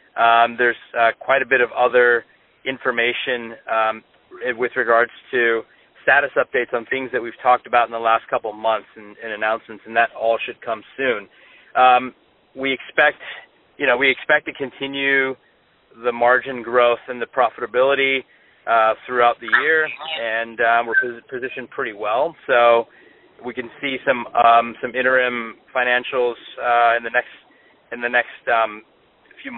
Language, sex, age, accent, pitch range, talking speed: English, male, 30-49, American, 115-125 Hz, 160 wpm